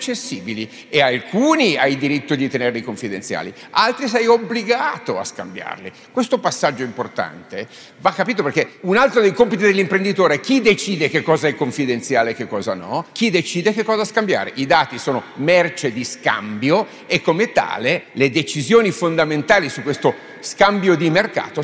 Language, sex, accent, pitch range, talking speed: Italian, male, native, 135-190 Hz, 160 wpm